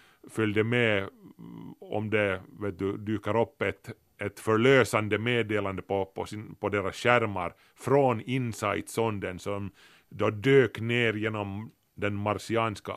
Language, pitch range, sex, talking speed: Swedish, 95-120 Hz, male, 130 wpm